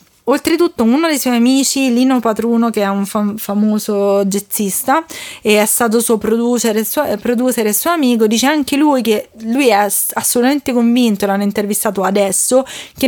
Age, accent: 20-39, native